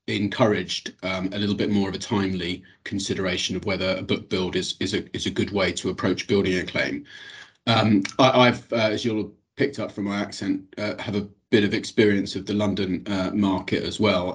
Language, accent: English, British